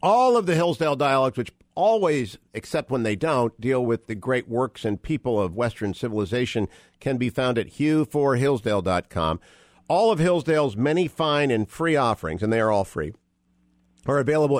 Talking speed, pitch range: 170 wpm, 100-140 Hz